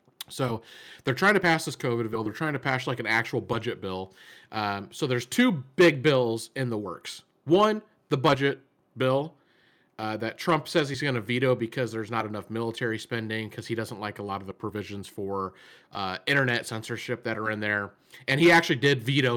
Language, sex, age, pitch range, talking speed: English, male, 30-49, 115-145 Hz, 205 wpm